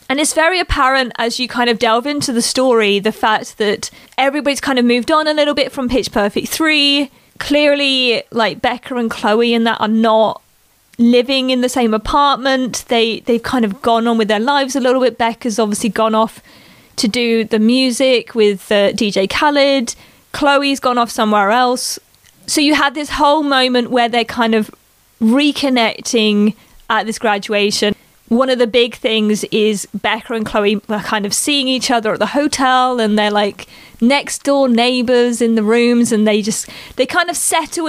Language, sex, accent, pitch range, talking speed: English, female, British, 220-270 Hz, 185 wpm